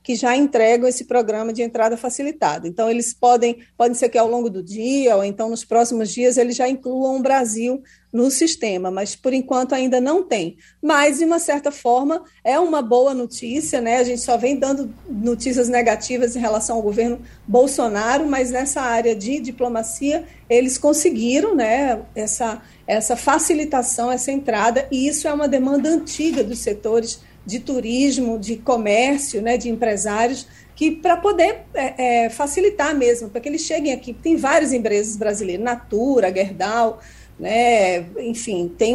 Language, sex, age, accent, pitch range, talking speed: Portuguese, female, 40-59, Brazilian, 235-280 Hz, 160 wpm